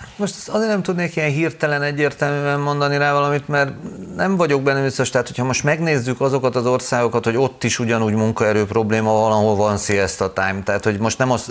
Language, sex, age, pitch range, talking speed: Hungarian, male, 30-49, 100-130 Hz, 195 wpm